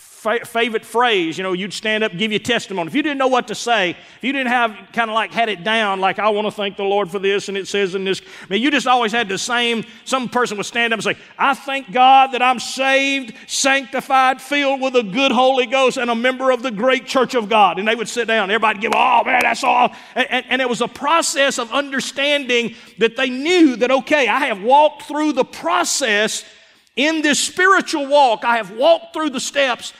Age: 40-59